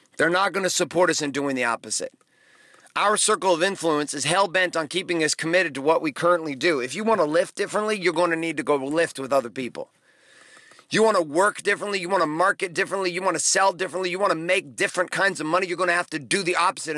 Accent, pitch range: American, 165-210 Hz